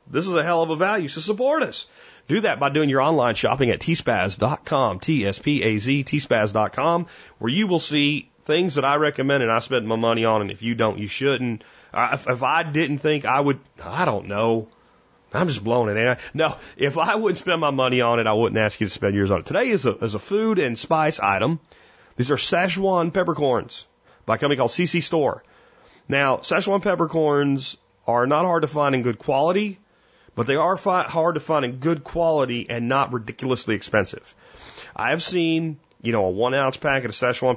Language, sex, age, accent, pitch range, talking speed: English, male, 30-49, American, 115-165 Hz, 205 wpm